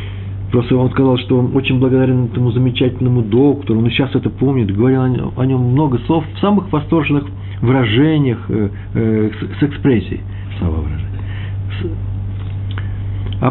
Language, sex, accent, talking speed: Russian, male, native, 140 wpm